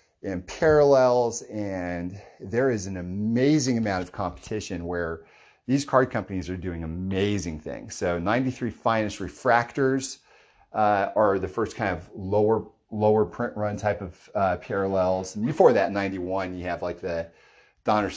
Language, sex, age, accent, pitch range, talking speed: English, male, 40-59, American, 90-110 Hz, 150 wpm